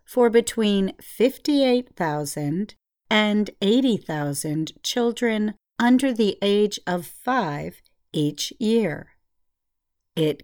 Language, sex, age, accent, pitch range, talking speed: English, female, 50-69, American, 160-230 Hz, 80 wpm